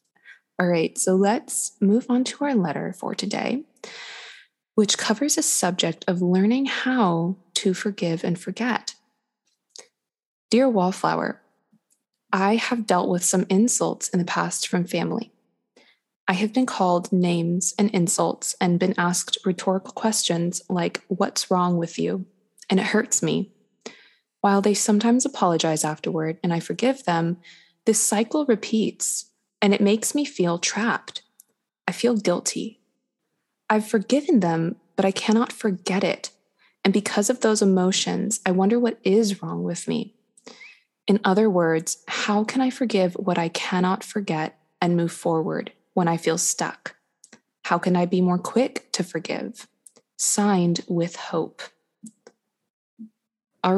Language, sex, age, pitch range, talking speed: English, female, 20-39, 175-225 Hz, 140 wpm